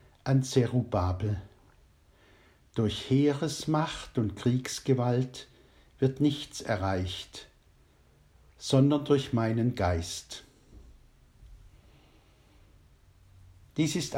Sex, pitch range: male, 95-130 Hz